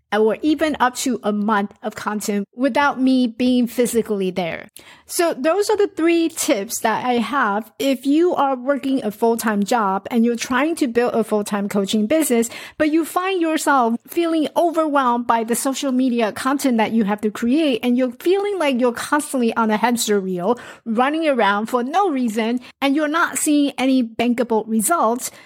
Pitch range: 220-285 Hz